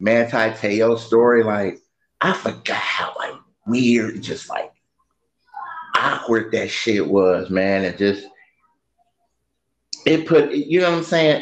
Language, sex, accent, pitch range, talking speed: English, male, American, 105-165 Hz, 130 wpm